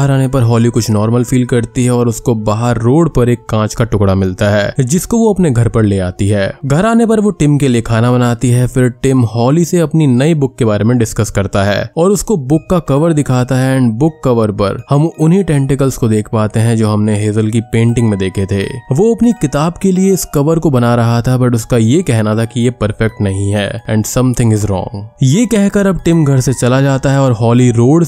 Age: 20-39